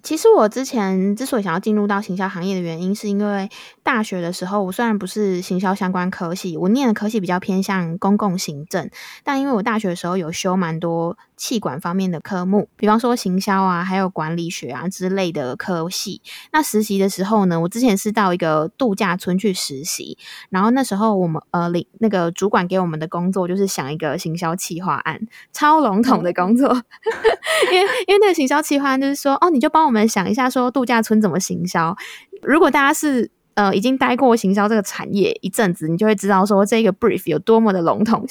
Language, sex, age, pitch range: Chinese, female, 20-39, 185-230 Hz